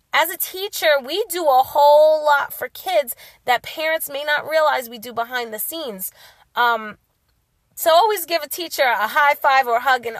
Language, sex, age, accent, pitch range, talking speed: English, female, 30-49, American, 235-310 Hz, 195 wpm